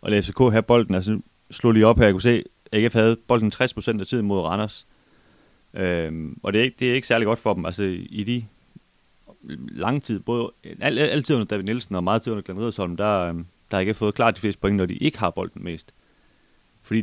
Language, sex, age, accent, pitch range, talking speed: Danish, male, 30-49, native, 90-110 Hz, 235 wpm